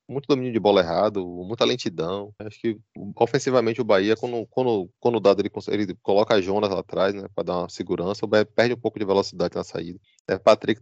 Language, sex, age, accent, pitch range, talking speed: Portuguese, male, 20-39, Brazilian, 105-130 Hz, 220 wpm